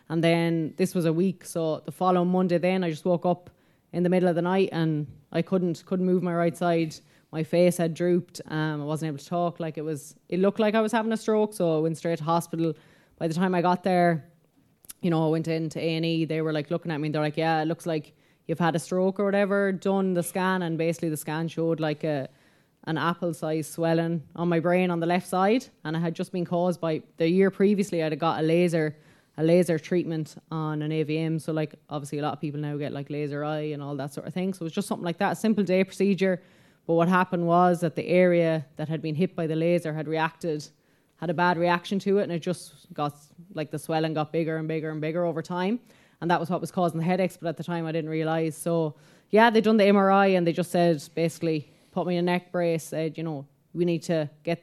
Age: 20-39